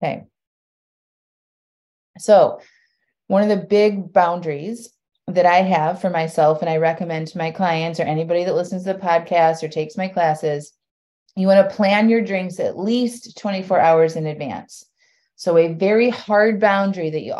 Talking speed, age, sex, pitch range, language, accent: 165 wpm, 30-49, female, 165-205 Hz, English, American